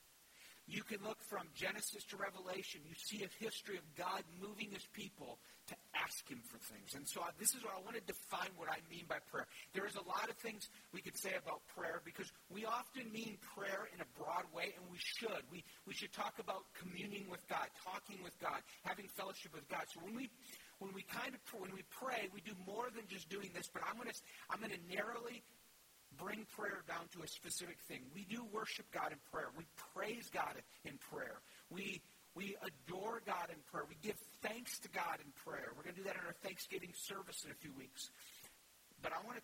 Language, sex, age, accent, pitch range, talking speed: English, male, 50-69, American, 175-215 Hz, 225 wpm